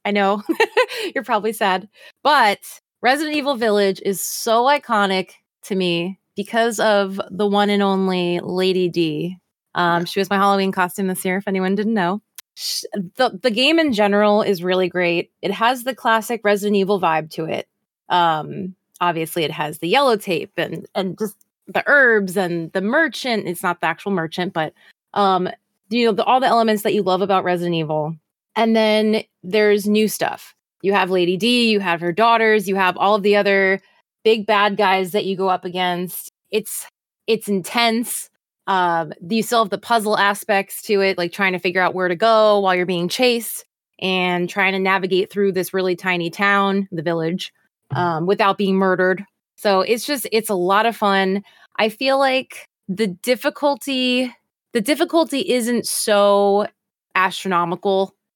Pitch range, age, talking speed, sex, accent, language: 185-220 Hz, 20-39, 175 wpm, female, American, English